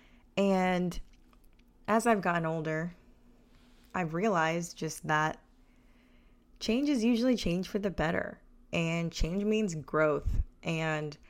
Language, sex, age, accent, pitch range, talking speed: English, female, 20-39, American, 155-195 Hz, 110 wpm